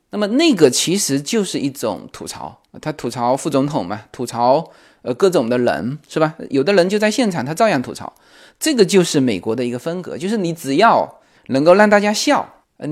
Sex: male